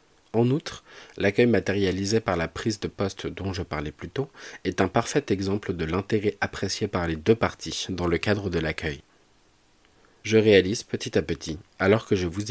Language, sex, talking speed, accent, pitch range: French, male, 185 wpm, French, 90-105 Hz